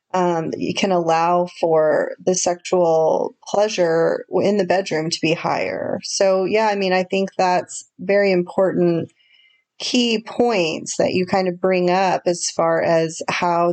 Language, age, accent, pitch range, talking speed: English, 30-49, American, 170-200 Hz, 155 wpm